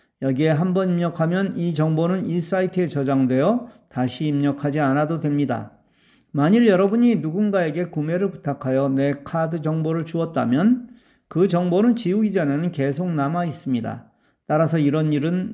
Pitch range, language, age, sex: 140-195 Hz, Korean, 40-59, male